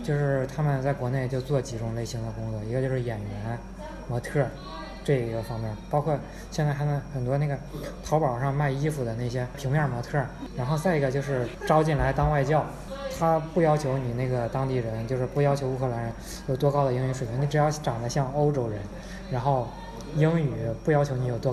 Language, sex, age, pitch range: Chinese, male, 20-39, 125-150 Hz